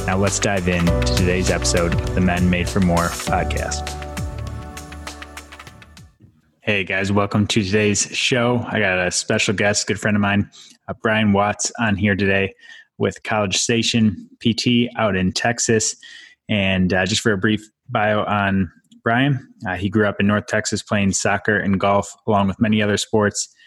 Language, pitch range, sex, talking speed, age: English, 95-110 Hz, male, 170 wpm, 20-39